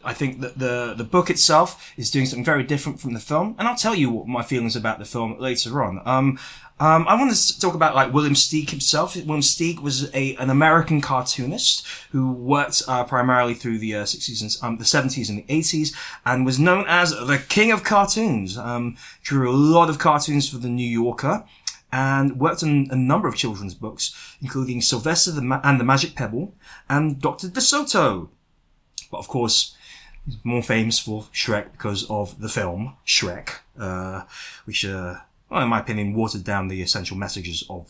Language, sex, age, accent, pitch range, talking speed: English, male, 20-39, British, 120-160 Hz, 195 wpm